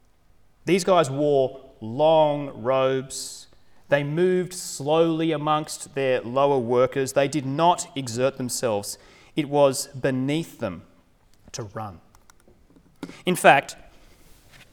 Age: 30-49